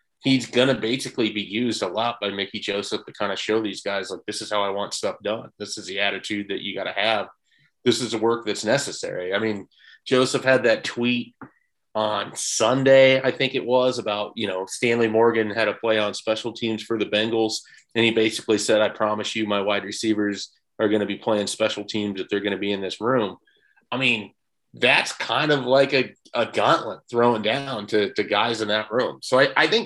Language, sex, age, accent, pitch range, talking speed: English, male, 30-49, American, 105-115 Hz, 225 wpm